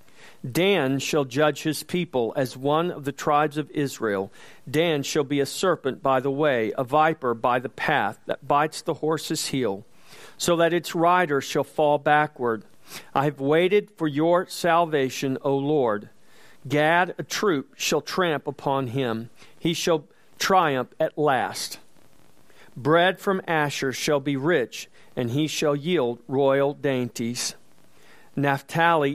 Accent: American